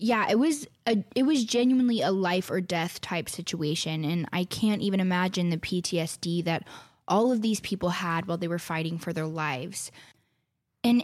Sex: female